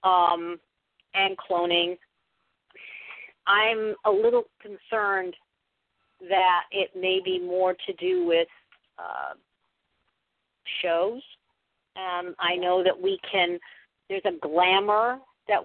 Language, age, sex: English, 50-69, female